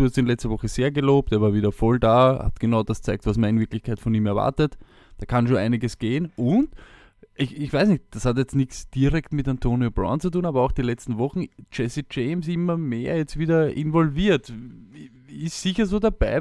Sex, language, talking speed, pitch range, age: male, German, 215 wpm, 110-150 Hz, 20-39